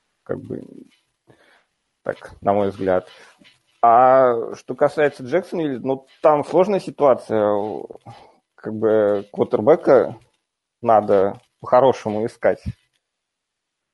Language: Russian